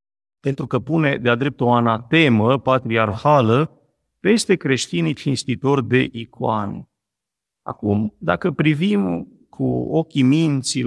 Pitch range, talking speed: 115-150 Hz, 105 wpm